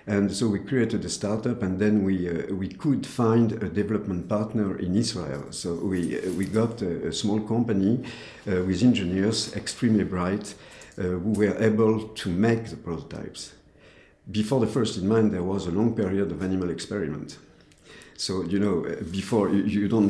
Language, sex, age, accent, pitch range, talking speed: English, male, 50-69, French, 85-105 Hz, 175 wpm